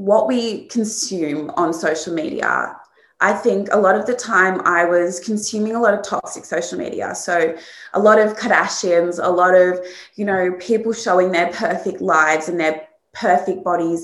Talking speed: 175 wpm